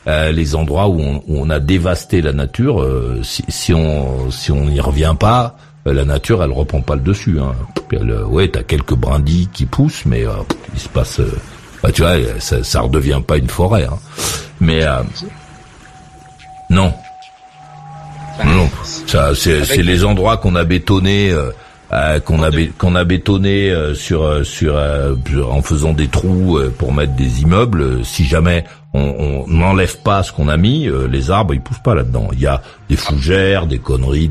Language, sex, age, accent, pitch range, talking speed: French, male, 60-79, French, 75-100 Hz, 180 wpm